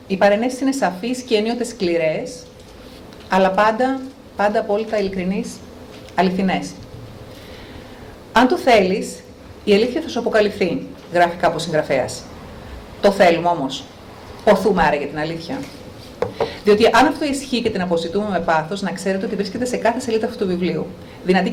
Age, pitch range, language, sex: 40-59, 170-225 Hz, Greek, female